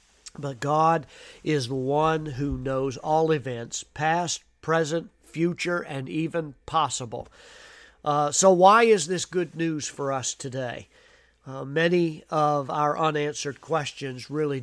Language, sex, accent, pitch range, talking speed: English, male, American, 125-155 Hz, 130 wpm